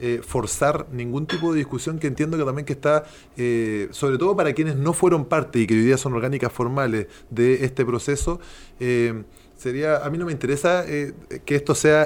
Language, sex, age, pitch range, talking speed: Spanish, male, 20-39, 120-145 Hz, 200 wpm